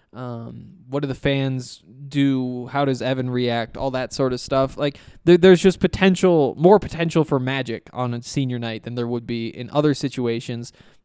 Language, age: English, 20-39